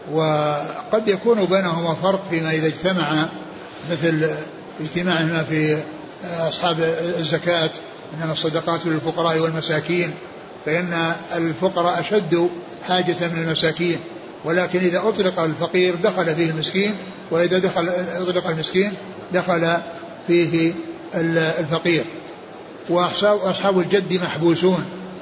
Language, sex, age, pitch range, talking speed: Arabic, male, 60-79, 165-185 Hz, 90 wpm